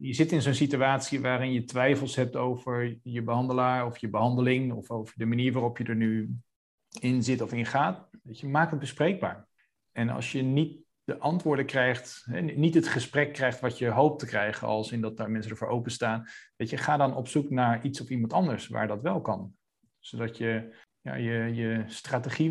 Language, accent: Dutch, Dutch